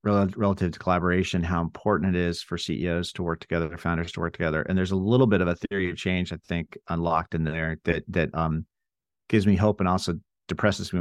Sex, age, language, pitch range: male, 40-59, English, 85-110 Hz